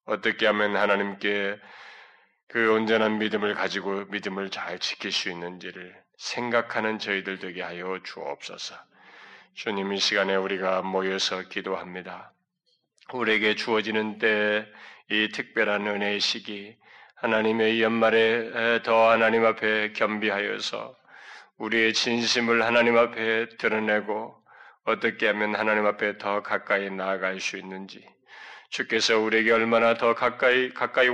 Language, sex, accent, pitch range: Korean, male, native, 100-115 Hz